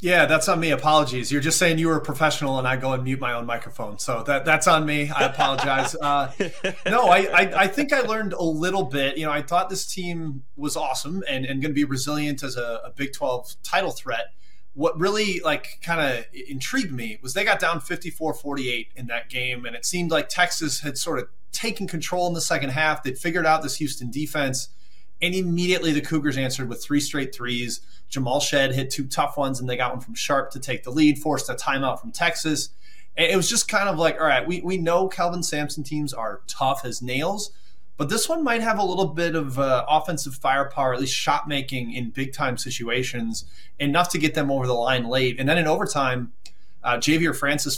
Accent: American